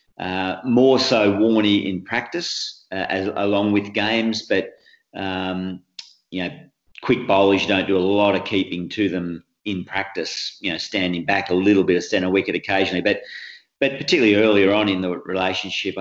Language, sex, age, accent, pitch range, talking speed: English, male, 40-59, Australian, 95-110 Hz, 170 wpm